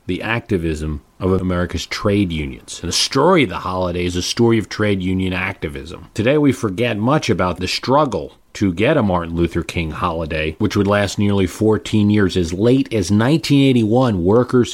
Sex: male